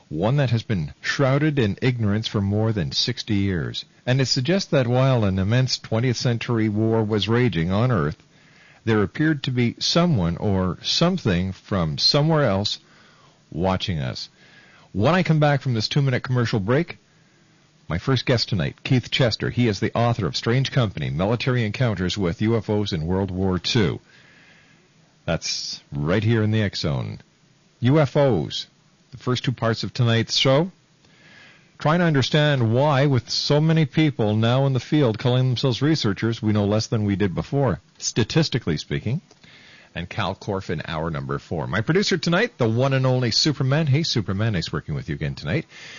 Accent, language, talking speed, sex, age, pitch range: American, English, 170 wpm, male, 50-69, 105-150 Hz